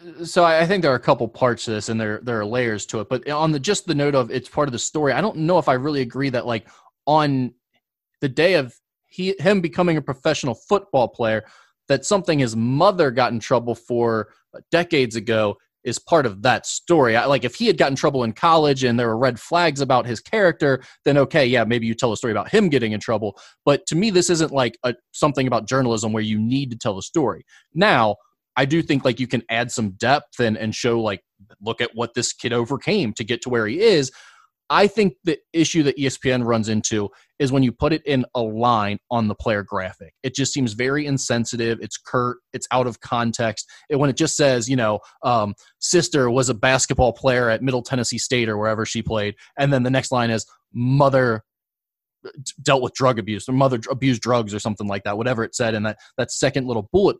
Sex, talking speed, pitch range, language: male, 230 wpm, 115-145 Hz, English